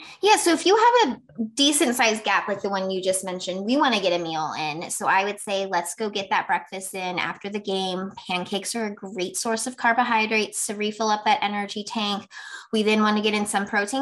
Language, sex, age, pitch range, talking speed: English, female, 20-39, 180-215 Hz, 240 wpm